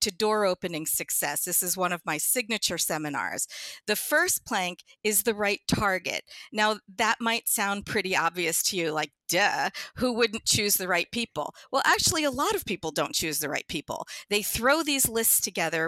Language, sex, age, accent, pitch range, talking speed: English, female, 50-69, American, 185-250 Hz, 190 wpm